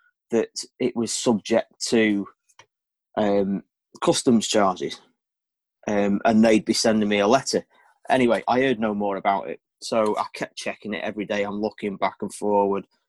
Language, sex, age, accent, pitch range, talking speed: English, male, 30-49, British, 105-130 Hz, 160 wpm